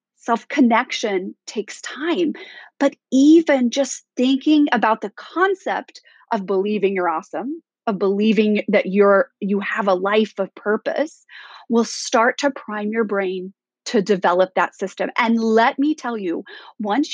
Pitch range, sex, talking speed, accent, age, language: 210-285 Hz, female, 145 wpm, American, 30-49, English